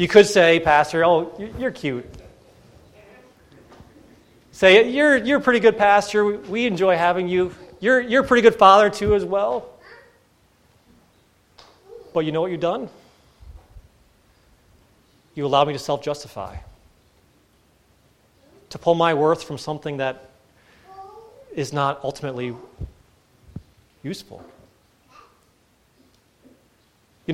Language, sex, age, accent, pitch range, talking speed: English, male, 30-49, American, 155-210 Hz, 110 wpm